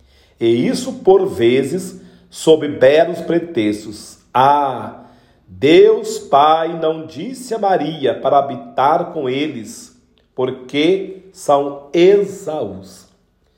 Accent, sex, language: Brazilian, male, Portuguese